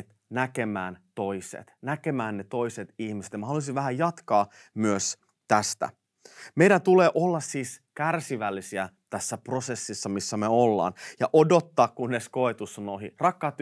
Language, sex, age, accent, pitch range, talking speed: Finnish, male, 30-49, native, 105-140 Hz, 130 wpm